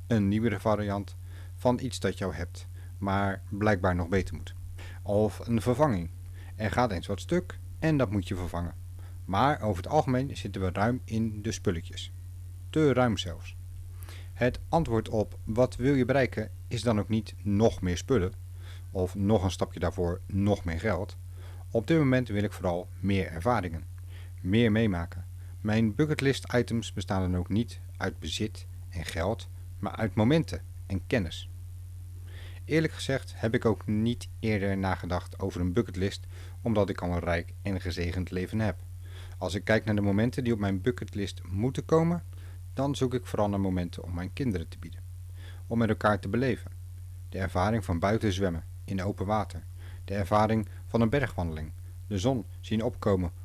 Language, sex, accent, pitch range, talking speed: Dutch, male, Belgian, 90-110 Hz, 170 wpm